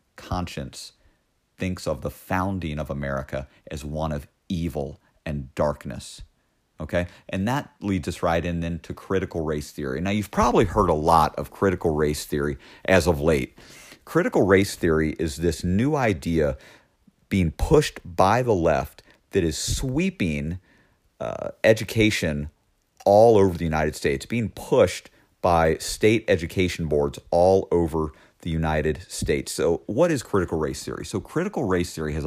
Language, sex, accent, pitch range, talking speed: English, male, American, 75-100 Hz, 150 wpm